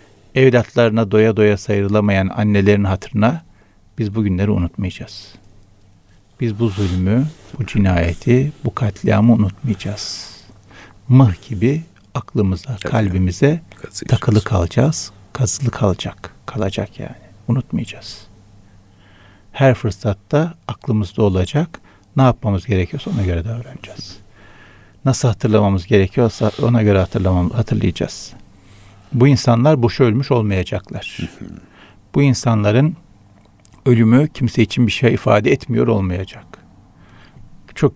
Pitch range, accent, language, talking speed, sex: 100-120 Hz, native, Turkish, 95 wpm, male